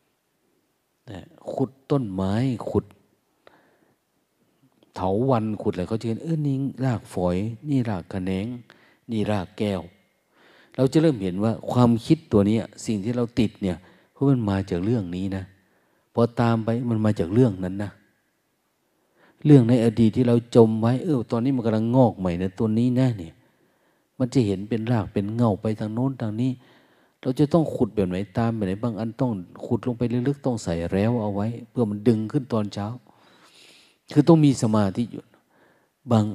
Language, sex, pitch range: Thai, male, 95-120 Hz